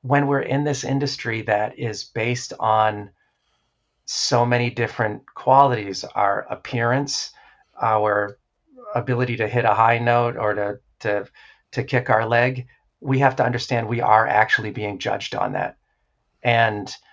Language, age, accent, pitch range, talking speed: English, 40-59, American, 115-130 Hz, 145 wpm